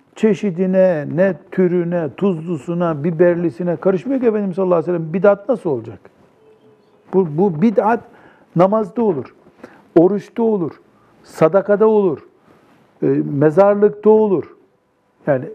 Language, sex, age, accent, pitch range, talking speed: Turkish, male, 60-79, native, 150-200 Hz, 105 wpm